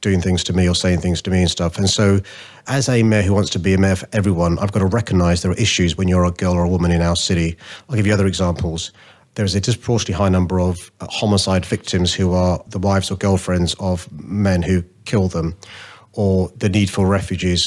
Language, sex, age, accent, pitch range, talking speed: English, male, 30-49, British, 90-105 Hz, 240 wpm